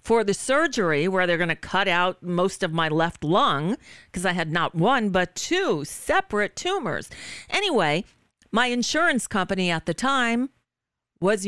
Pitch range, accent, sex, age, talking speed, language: 165-225 Hz, American, female, 40-59, 160 wpm, English